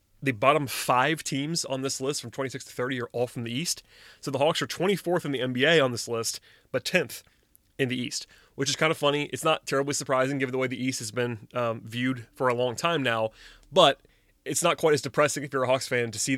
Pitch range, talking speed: 120-145 Hz, 250 wpm